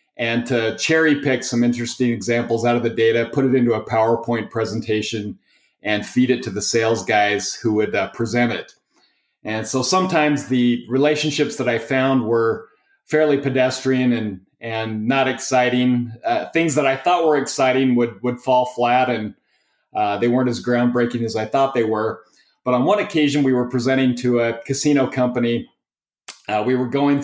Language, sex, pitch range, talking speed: English, male, 120-135 Hz, 180 wpm